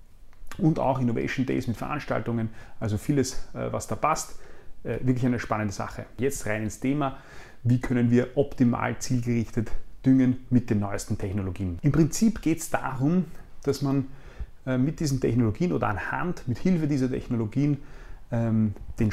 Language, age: German, 30-49